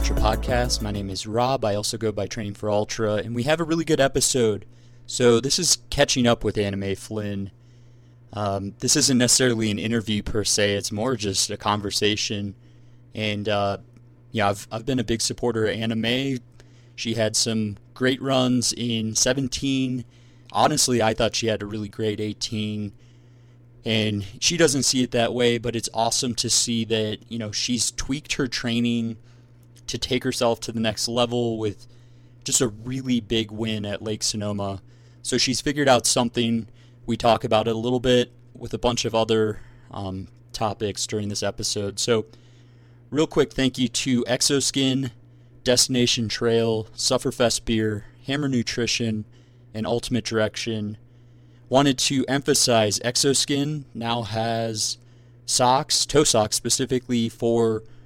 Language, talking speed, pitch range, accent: English, 155 wpm, 110-125 Hz, American